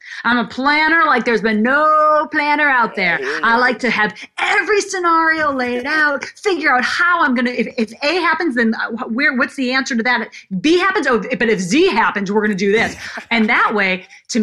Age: 30-49